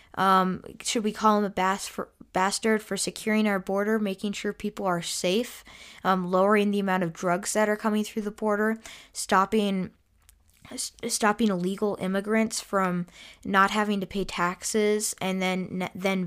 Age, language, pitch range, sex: 20-39, English, 185-225 Hz, female